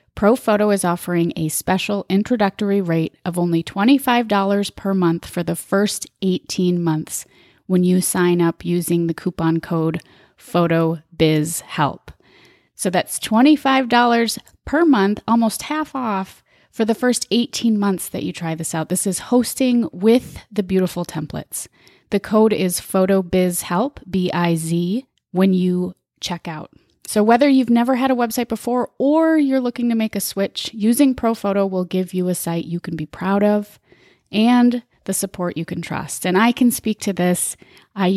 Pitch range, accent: 175-215 Hz, American